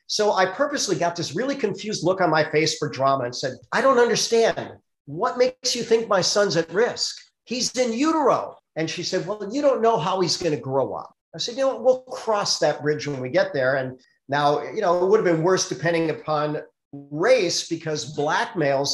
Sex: male